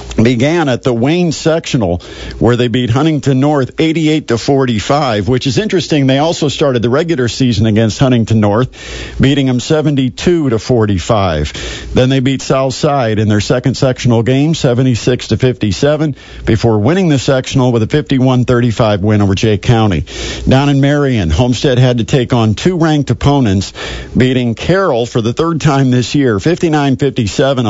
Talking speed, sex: 150 wpm, male